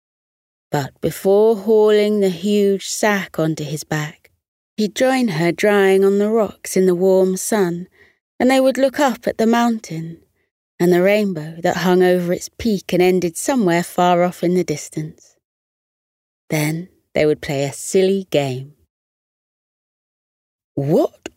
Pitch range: 150-220 Hz